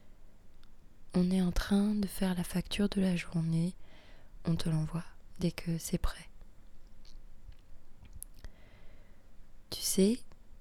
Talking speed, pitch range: 115 wpm, 105-170 Hz